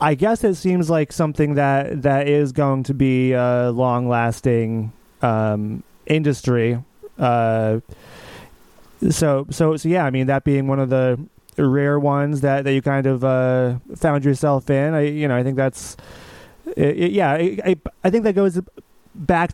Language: English